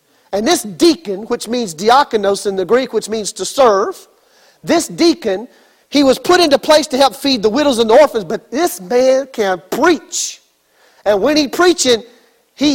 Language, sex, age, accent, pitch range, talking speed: English, male, 40-59, American, 225-315 Hz, 180 wpm